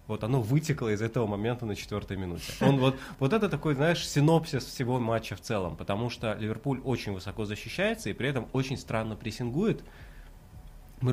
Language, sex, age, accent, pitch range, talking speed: Russian, male, 20-39, native, 100-140 Hz, 175 wpm